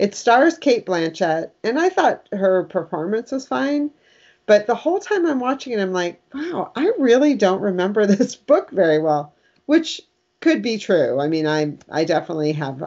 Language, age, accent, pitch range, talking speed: English, 40-59, American, 160-220 Hz, 180 wpm